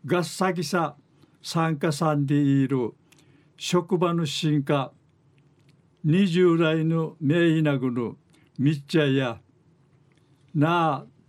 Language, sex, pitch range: Japanese, male, 145-170 Hz